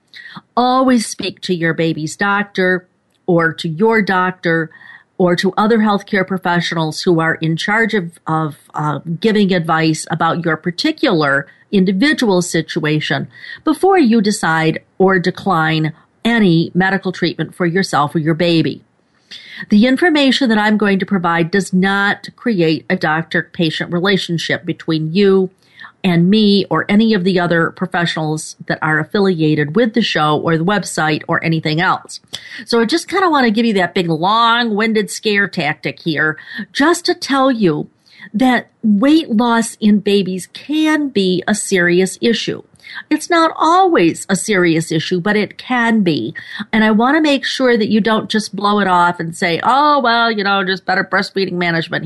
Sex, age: female, 50-69